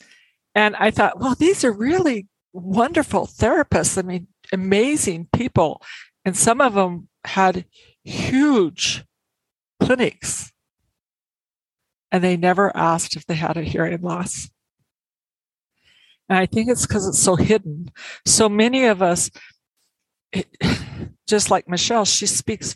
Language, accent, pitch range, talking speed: English, American, 160-200 Hz, 125 wpm